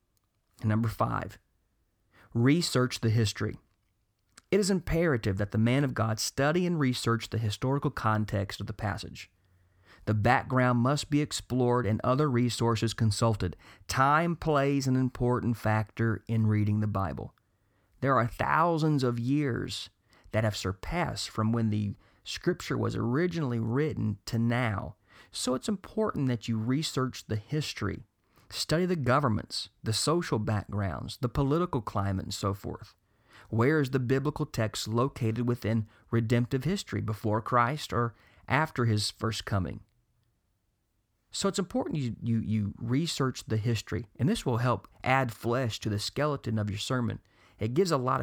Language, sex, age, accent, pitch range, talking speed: English, male, 40-59, American, 105-130 Hz, 145 wpm